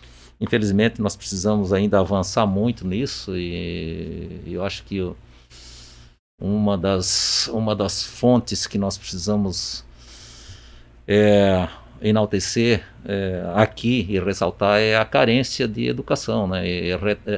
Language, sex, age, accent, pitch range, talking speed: Portuguese, male, 50-69, Brazilian, 85-120 Hz, 115 wpm